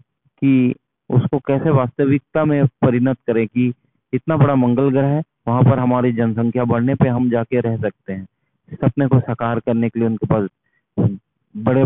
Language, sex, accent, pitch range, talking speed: Hindi, male, native, 115-135 Hz, 165 wpm